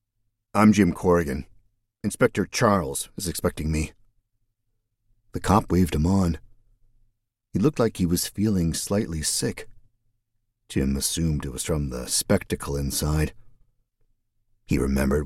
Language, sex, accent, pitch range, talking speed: English, male, American, 85-110 Hz, 120 wpm